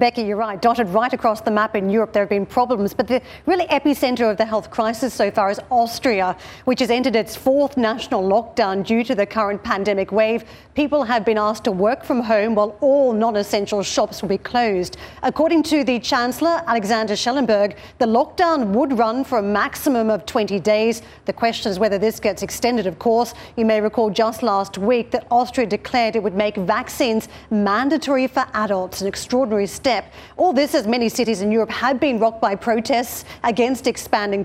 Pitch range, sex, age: 215-260 Hz, female, 40-59